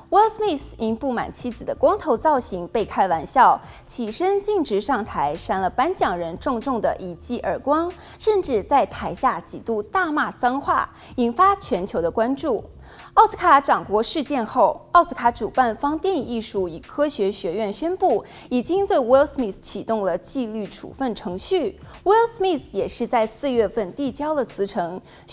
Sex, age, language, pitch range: female, 20-39, Chinese, 210-330 Hz